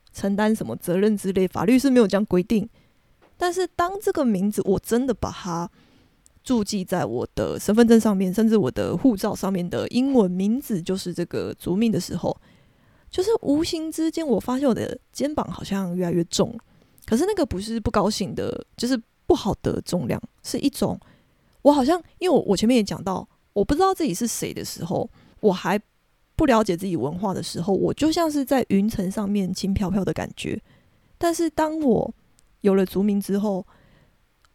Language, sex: Chinese, female